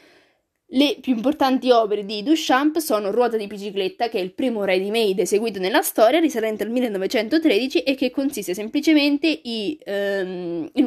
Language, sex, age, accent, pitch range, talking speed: Italian, female, 20-39, native, 195-280 Hz, 145 wpm